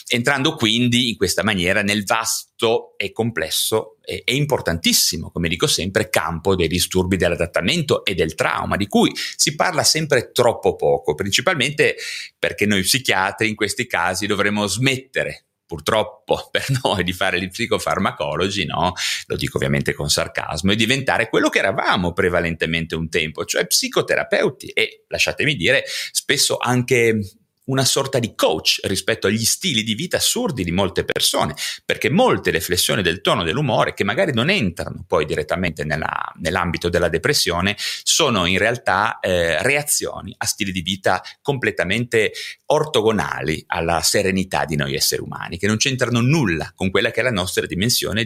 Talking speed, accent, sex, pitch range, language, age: 150 wpm, native, male, 90-140 Hz, Italian, 30-49